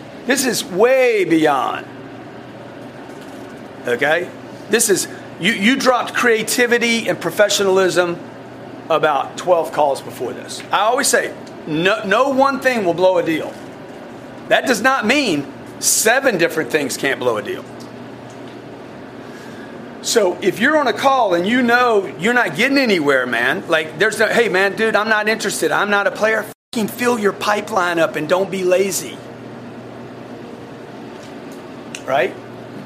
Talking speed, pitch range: 140 wpm, 190-245 Hz